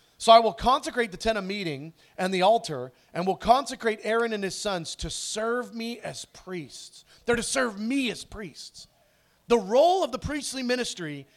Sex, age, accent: male, 40-59, American